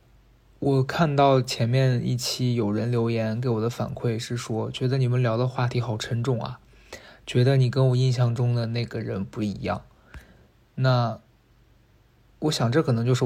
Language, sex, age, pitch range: Chinese, male, 20-39, 115-130 Hz